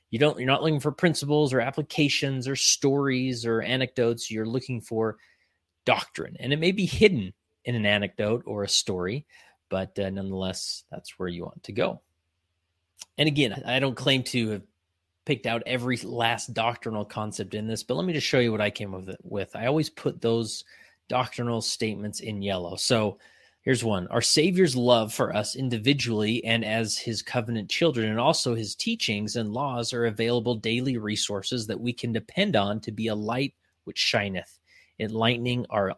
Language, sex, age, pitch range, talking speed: English, male, 30-49, 105-125 Hz, 175 wpm